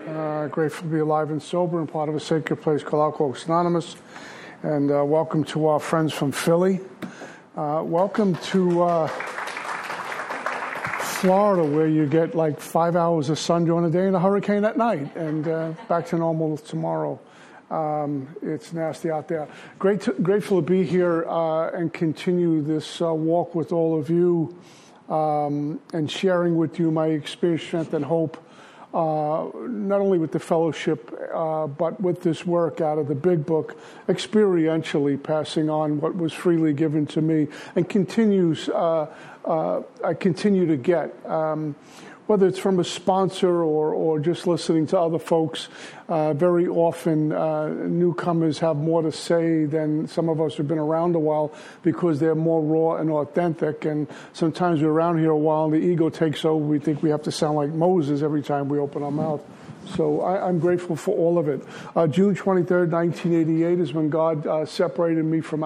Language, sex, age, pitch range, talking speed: English, male, 50-69, 155-175 Hz, 180 wpm